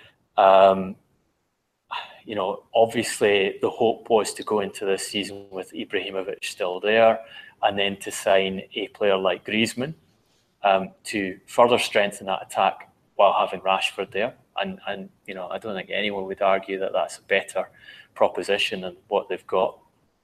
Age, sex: 20-39, male